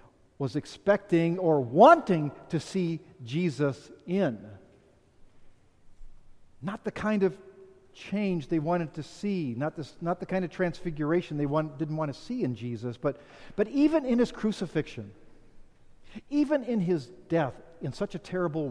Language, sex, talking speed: English, male, 150 wpm